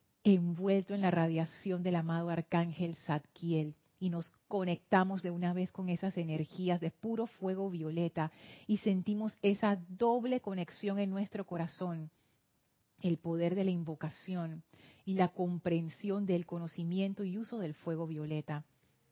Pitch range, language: 170-200 Hz, Spanish